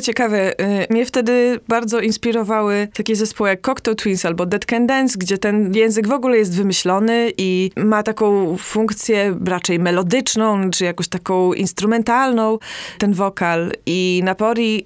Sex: female